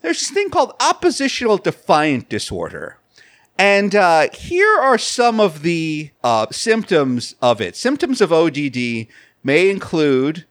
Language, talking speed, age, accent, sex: English, 130 wpm, 40-59, American, male